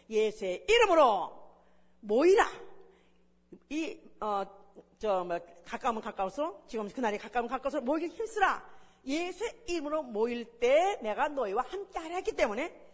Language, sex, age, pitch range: Korean, female, 40-59, 240-365 Hz